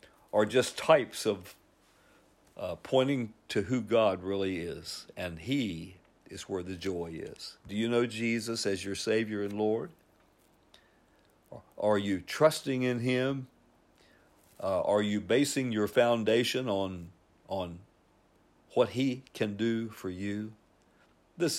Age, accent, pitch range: 50-69, American, 95-115 Hz